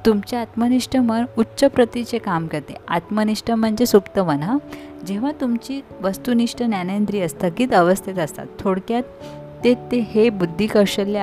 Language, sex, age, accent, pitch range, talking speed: Marathi, female, 20-39, native, 175-220 Hz, 135 wpm